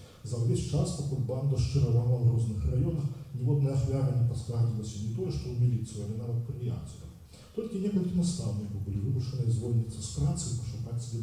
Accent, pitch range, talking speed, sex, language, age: native, 110-135 Hz, 175 wpm, male, Ukrainian, 40-59